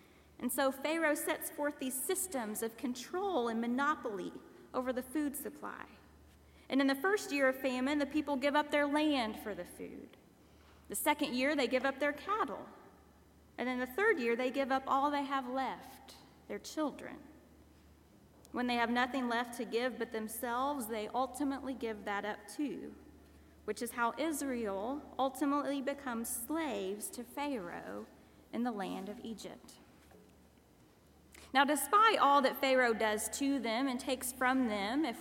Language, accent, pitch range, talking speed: English, American, 235-290 Hz, 160 wpm